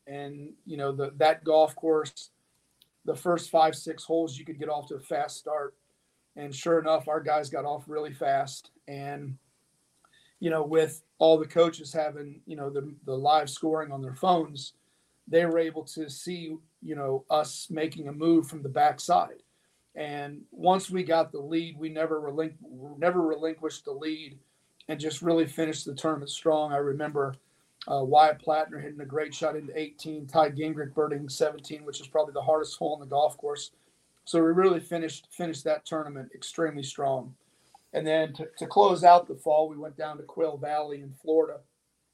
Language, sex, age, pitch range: English, male, 40-59, 145-160 Hz